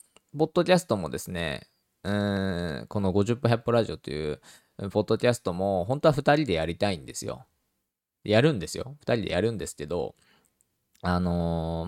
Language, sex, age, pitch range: Japanese, male, 20-39, 85-120 Hz